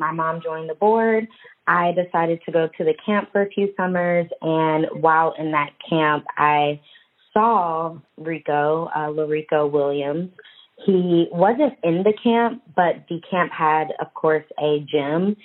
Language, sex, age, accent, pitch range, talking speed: English, female, 20-39, American, 155-195 Hz, 155 wpm